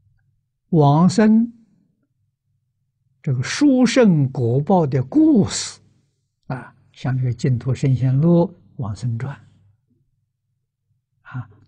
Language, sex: Chinese, male